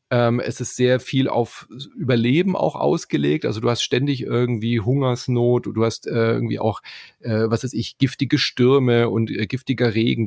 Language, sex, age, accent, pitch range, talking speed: German, male, 30-49, German, 110-135 Hz, 180 wpm